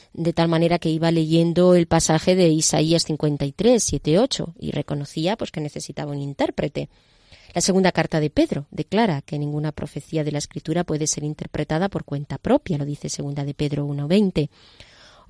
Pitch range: 150-185 Hz